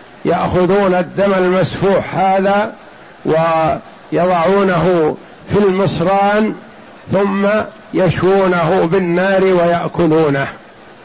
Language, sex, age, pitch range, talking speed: Arabic, male, 50-69, 180-200 Hz, 60 wpm